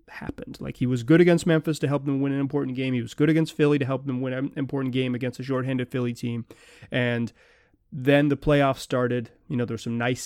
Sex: male